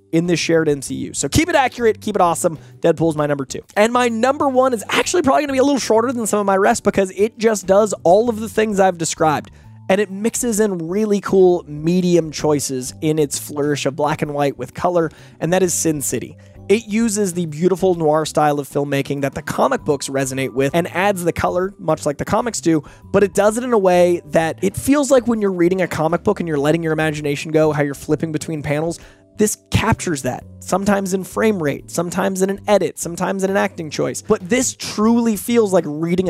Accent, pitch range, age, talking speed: American, 150-210 Hz, 20-39, 225 wpm